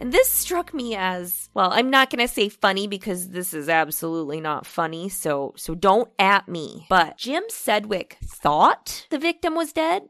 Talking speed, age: 185 wpm, 20-39